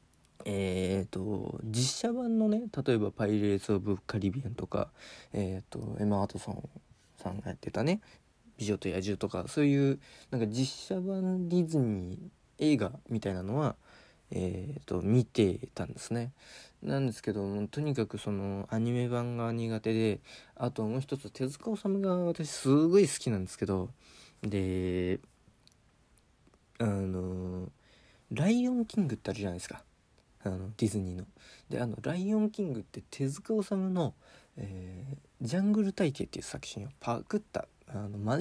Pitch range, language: 100-135 Hz, Japanese